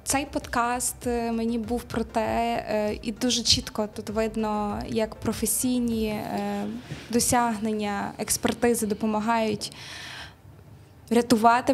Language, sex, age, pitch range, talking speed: Ukrainian, female, 20-39, 210-240 Hz, 85 wpm